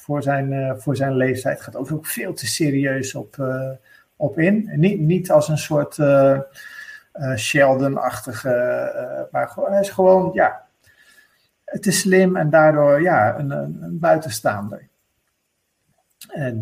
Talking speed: 145 wpm